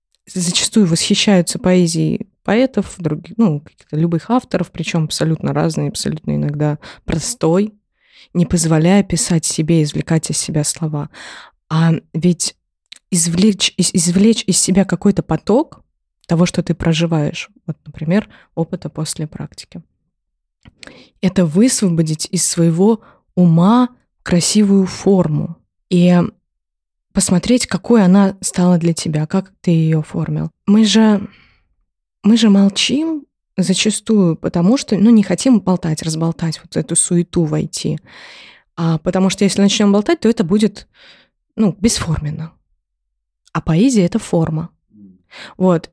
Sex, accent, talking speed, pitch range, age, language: female, native, 120 wpm, 160-200 Hz, 20-39, Russian